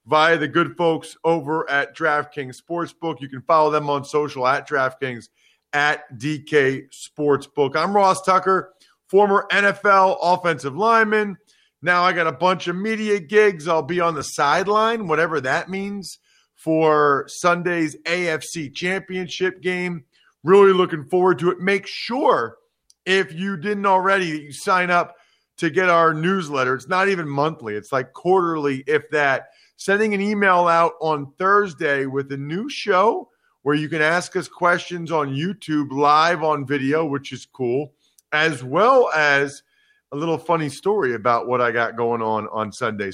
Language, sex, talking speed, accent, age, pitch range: English, male, 160 wpm, American, 40-59, 140-185 Hz